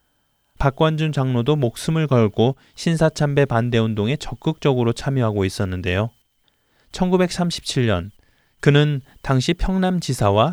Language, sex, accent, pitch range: Korean, male, native, 105-145 Hz